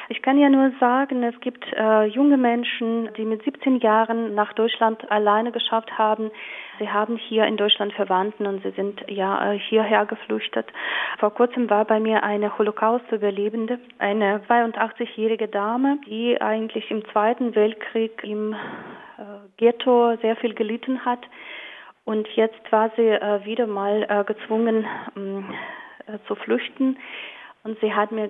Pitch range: 205-240 Hz